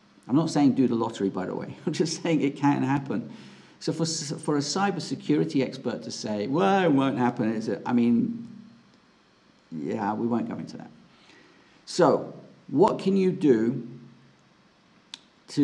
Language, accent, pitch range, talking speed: English, British, 115-160 Hz, 165 wpm